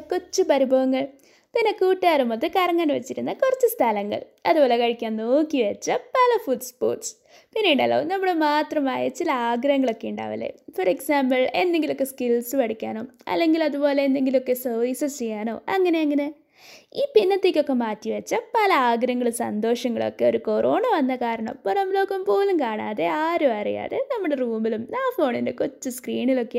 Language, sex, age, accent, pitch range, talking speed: Malayalam, female, 20-39, native, 235-380 Hz, 125 wpm